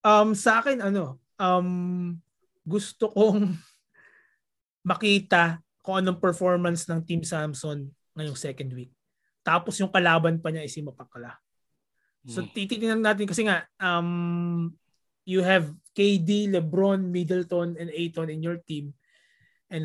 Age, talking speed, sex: 20-39, 120 wpm, male